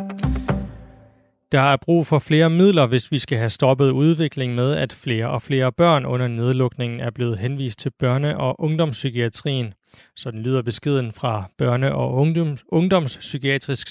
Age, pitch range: 30-49, 120-150 Hz